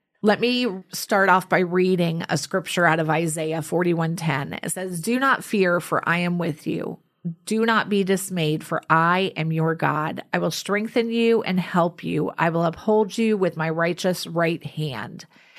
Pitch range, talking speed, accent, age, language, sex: 165-190 Hz, 180 wpm, American, 30-49, English, female